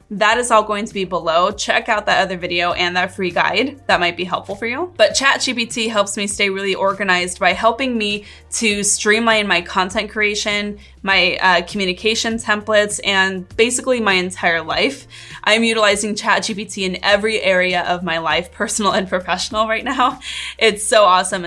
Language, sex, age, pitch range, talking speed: English, female, 20-39, 185-220 Hz, 175 wpm